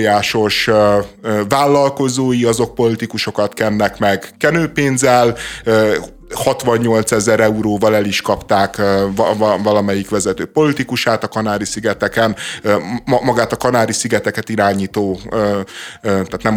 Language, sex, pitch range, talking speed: Hungarian, male, 110-135 Hz, 90 wpm